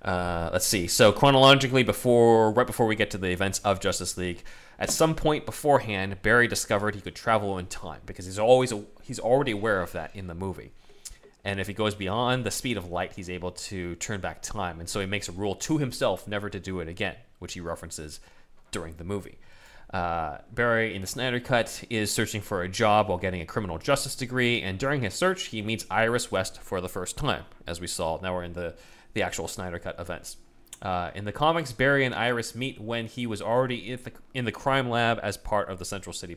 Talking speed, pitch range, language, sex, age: 225 wpm, 90-120 Hz, English, male, 30-49